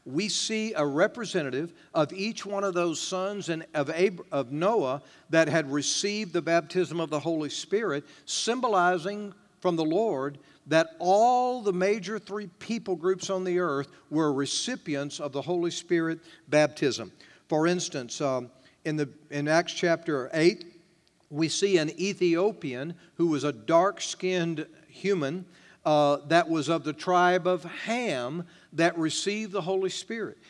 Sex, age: male, 50-69